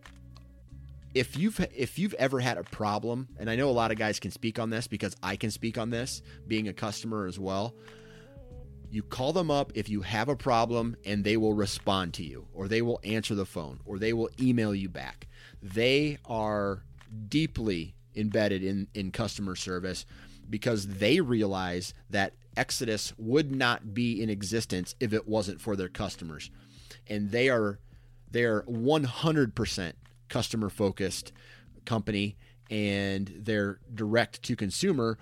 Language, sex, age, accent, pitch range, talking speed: English, male, 30-49, American, 100-120 Hz, 155 wpm